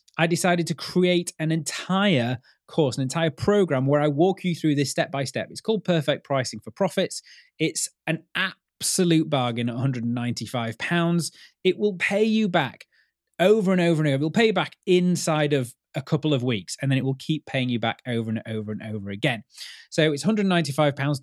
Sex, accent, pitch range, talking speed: male, British, 135-175 Hz, 195 wpm